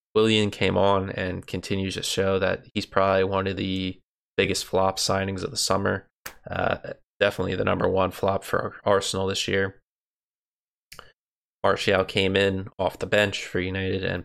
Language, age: English, 20-39